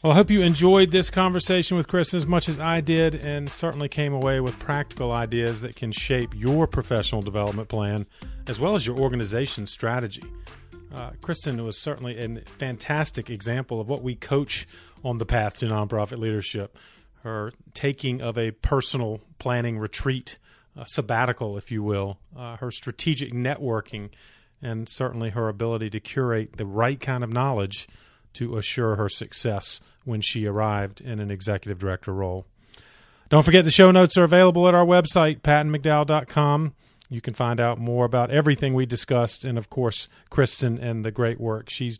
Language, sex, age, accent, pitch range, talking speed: English, male, 40-59, American, 110-145 Hz, 170 wpm